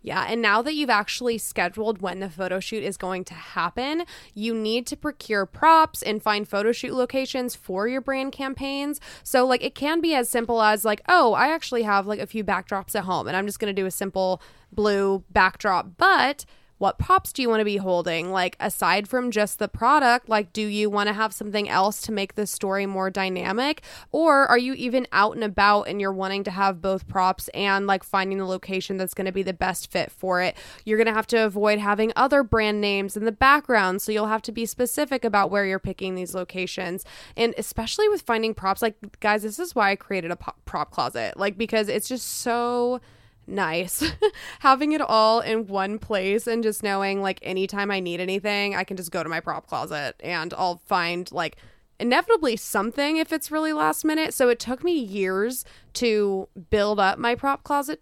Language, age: English, 20-39